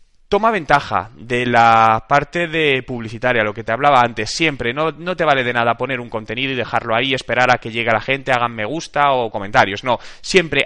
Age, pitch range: 20-39, 125-175 Hz